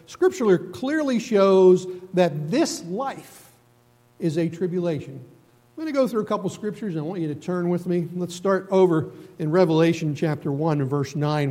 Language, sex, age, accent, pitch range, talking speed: English, male, 50-69, American, 125-180 Hz, 175 wpm